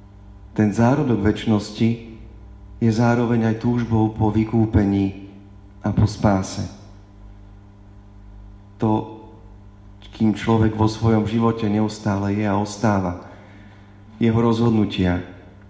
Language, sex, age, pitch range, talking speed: Slovak, male, 40-59, 100-110 Hz, 90 wpm